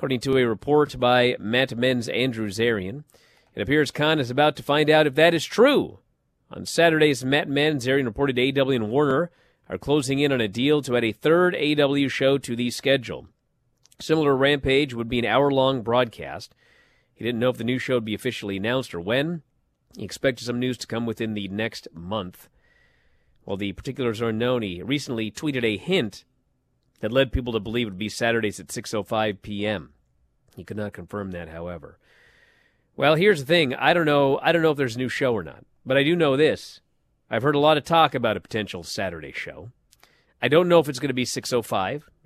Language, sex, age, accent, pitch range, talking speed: English, male, 40-59, American, 110-145 Hz, 210 wpm